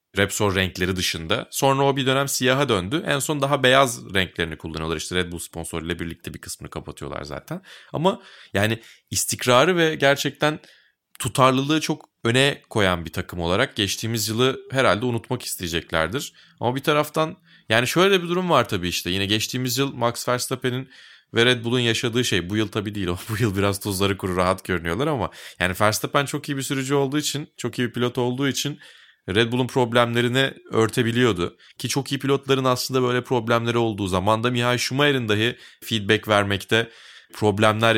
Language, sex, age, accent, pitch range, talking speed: Turkish, male, 30-49, native, 95-130 Hz, 165 wpm